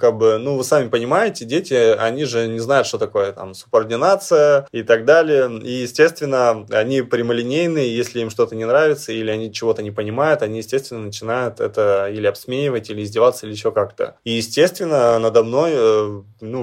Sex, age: male, 20-39